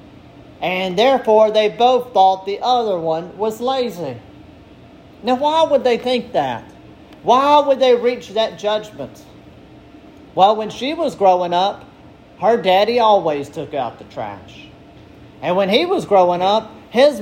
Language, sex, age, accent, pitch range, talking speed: English, male, 40-59, American, 175-235 Hz, 145 wpm